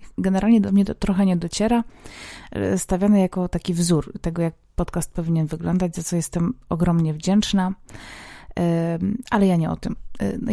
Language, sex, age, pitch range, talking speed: Polish, female, 30-49, 170-205 Hz, 155 wpm